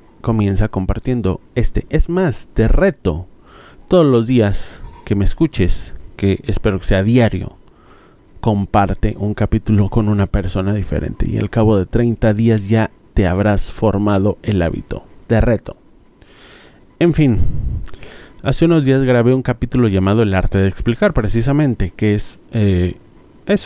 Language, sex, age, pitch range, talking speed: Spanish, male, 30-49, 100-125 Hz, 145 wpm